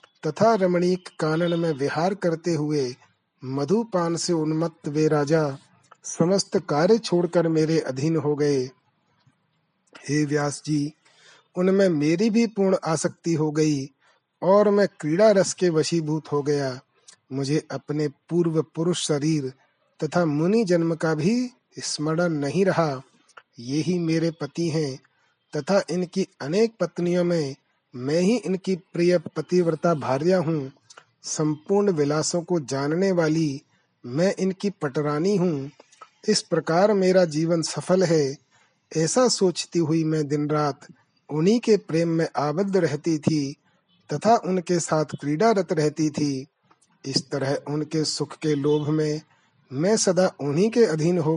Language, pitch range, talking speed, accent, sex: Hindi, 150-180 Hz, 130 wpm, native, male